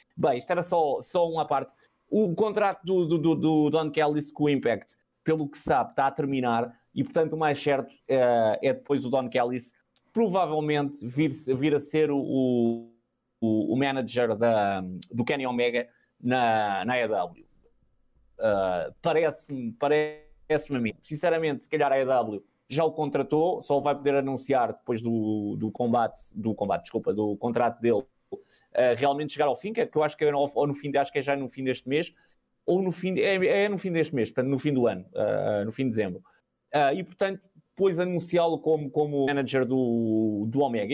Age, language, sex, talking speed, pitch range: 20-39, Portuguese, male, 195 wpm, 125-160 Hz